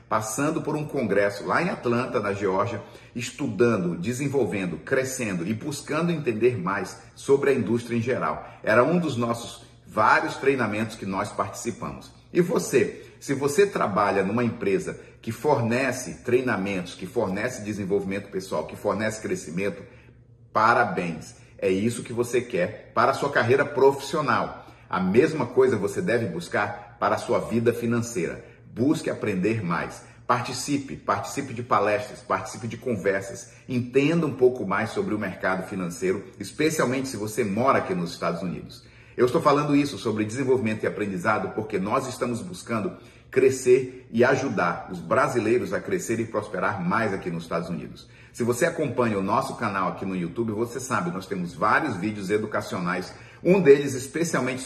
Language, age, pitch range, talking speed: English, 40-59, 105-135 Hz, 155 wpm